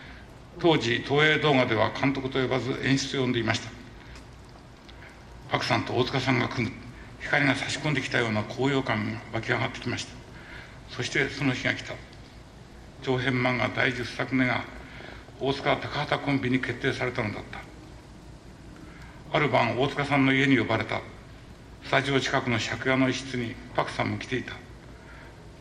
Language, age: Japanese, 60-79